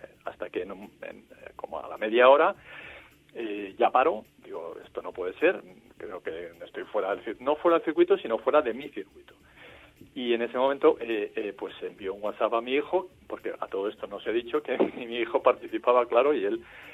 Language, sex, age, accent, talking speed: Spanish, male, 50-69, Spanish, 215 wpm